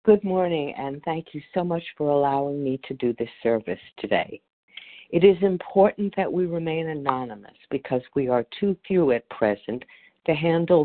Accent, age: American, 60-79